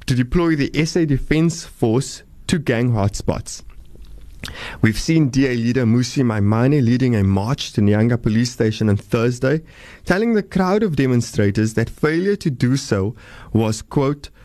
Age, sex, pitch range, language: 20-39, male, 110-155 Hz, English